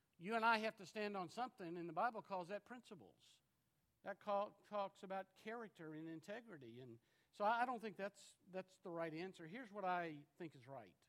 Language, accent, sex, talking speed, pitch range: English, American, male, 205 wpm, 150-210 Hz